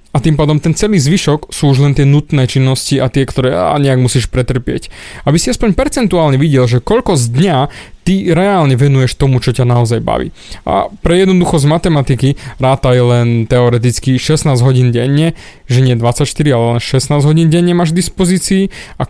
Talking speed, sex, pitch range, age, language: 180 wpm, male, 130-180 Hz, 20-39, Slovak